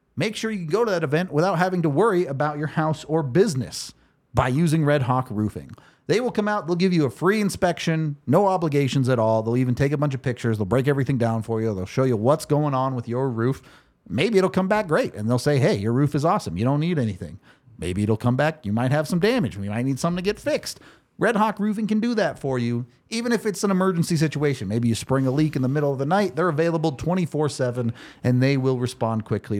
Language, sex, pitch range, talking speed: English, male, 110-155 Hz, 250 wpm